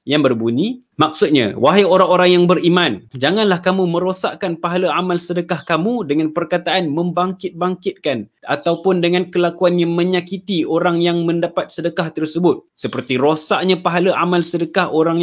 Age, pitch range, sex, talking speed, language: 20-39, 135-180 Hz, male, 125 wpm, Malay